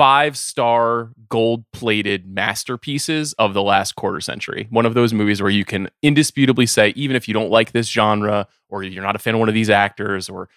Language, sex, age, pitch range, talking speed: English, male, 20-39, 105-150 Hz, 200 wpm